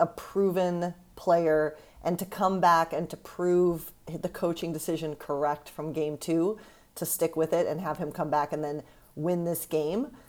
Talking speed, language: 180 wpm, English